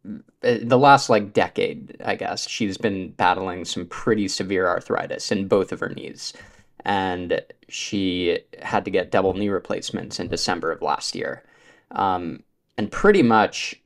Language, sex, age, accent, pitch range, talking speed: English, male, 20-39, American, 95-120 Hz, 150 wpm